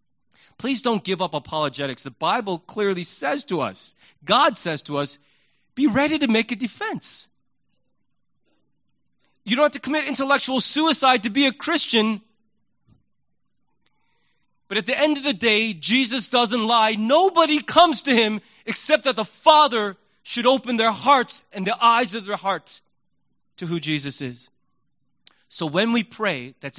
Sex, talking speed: male, 155 wpm